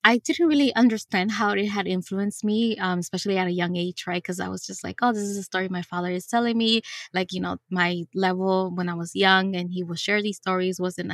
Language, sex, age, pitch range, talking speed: English, female, 20-39, 180-195 Hz, 255 wpm